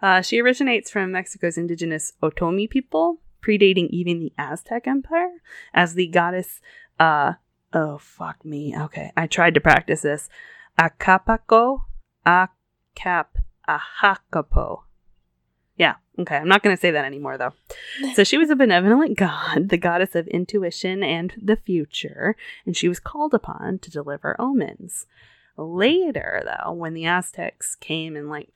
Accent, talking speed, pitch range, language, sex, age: American, 140 wpm, 155-215 Hz, English, female, 20-39